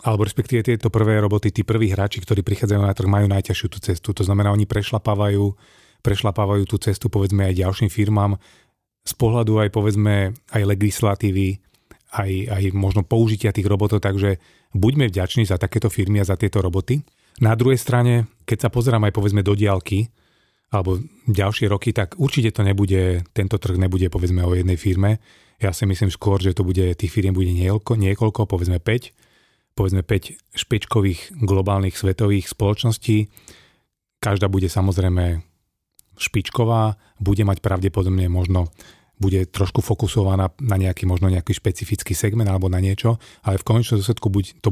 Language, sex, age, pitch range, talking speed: Slovak, male, 30-49, 95-110 Hz, 160 wpm